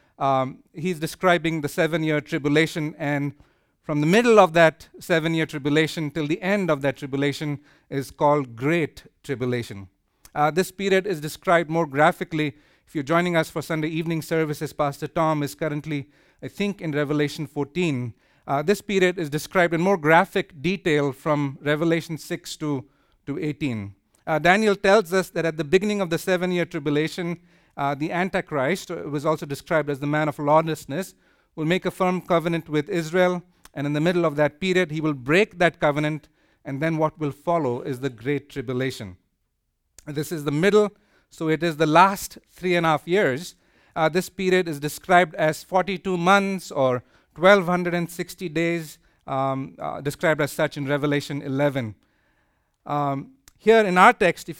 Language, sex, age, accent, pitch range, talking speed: English, male, 50-69, Indian, 145-175 Hz, 170 wpm